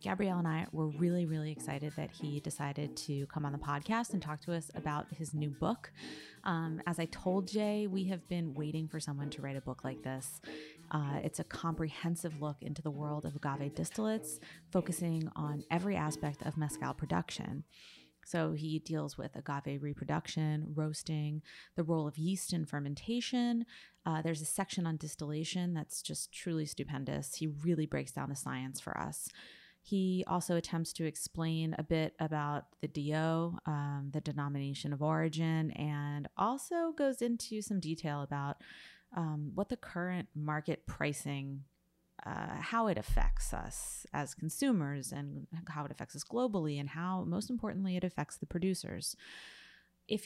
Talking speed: 165 wpm